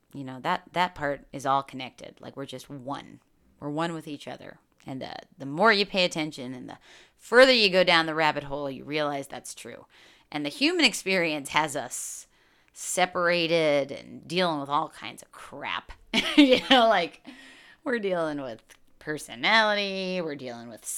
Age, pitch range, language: 30-49, 145-220 Hz, English